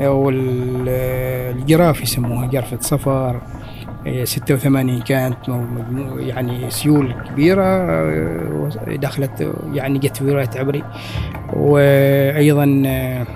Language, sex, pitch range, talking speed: Arabic, male, 125-150 Hz, 65 wpm